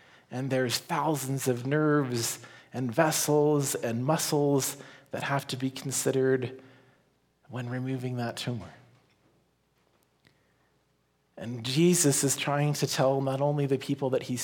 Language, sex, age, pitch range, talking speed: English, male, 40-59, 125-145 Hz, 125 wpm